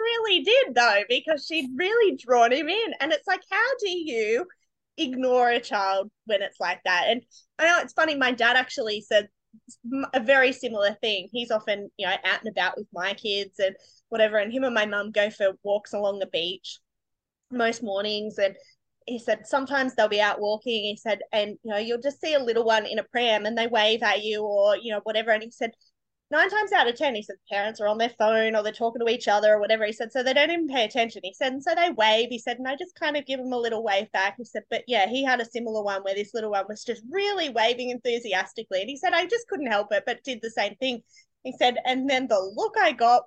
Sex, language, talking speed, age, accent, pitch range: female, English, 250 wpm, 20-39, Australian, 210-280 Hz